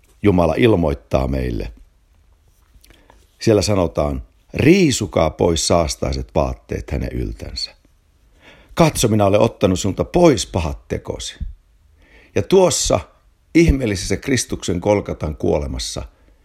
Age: 60-79